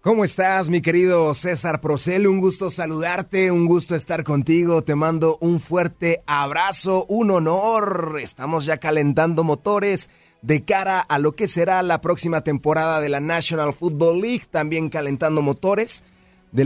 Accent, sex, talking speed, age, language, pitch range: Mexican, male, 150 wpm, 30-49, Spanish, 145-185 Hz